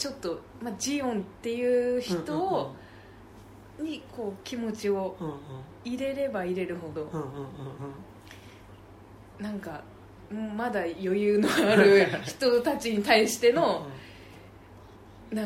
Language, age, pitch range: Japanese, 20-39, 135-225 Hz